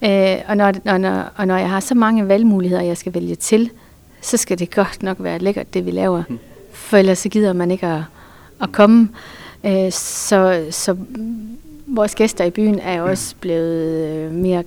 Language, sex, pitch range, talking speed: Danish, female, 175-215 Hz, 170 wpm